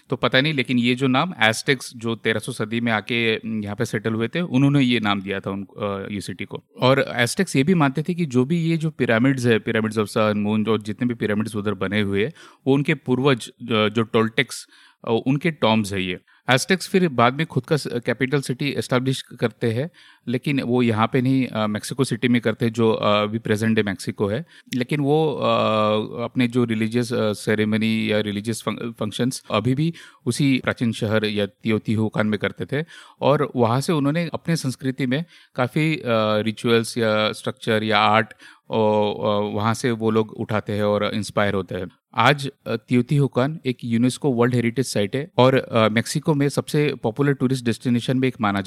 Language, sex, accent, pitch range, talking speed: Hindi, male, native, 110-135 Hz, 180 wpm